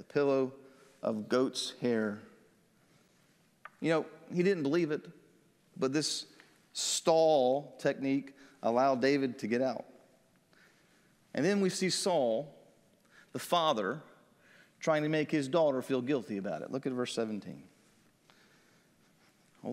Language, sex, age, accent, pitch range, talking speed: English, male, 40-59, American, 135-195 Hz, 120 wpm